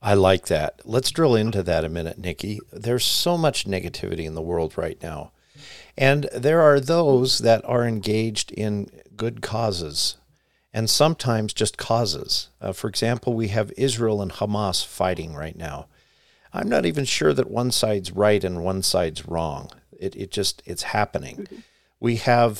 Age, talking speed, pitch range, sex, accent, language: 50-69, 165 wpm, 95-120 Hz, male, American, English